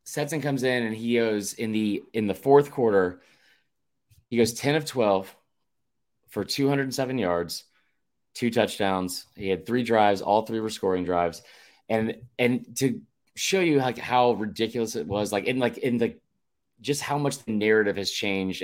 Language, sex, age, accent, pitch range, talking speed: English, male, 20-39, American, 100-125 Hz, 170 wpm